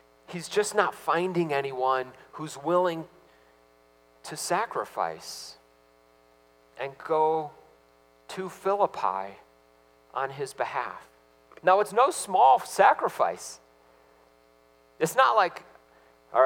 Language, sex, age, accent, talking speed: English, male, 40-59, American, 90 wpm